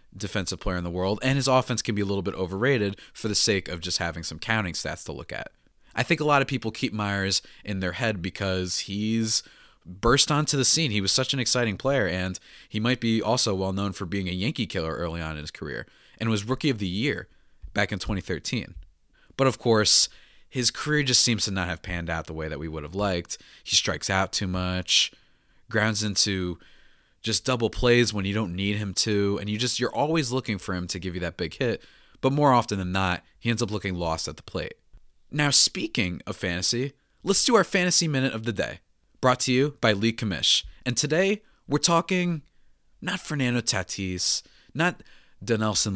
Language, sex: English, male